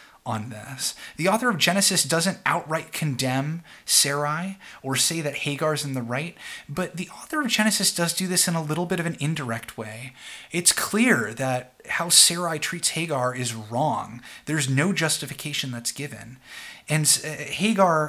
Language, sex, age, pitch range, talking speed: English, male, 30-49, 125-170 Hz, 165 wpm